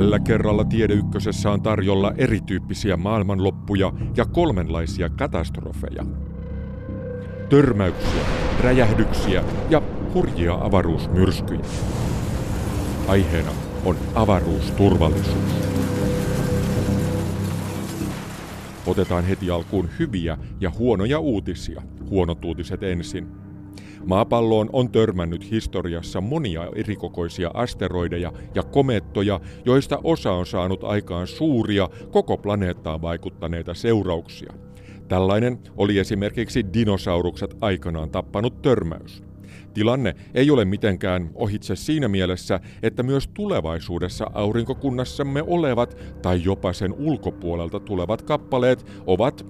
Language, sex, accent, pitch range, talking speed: Finnish, male, native, 90-105 Hz, 90 wpm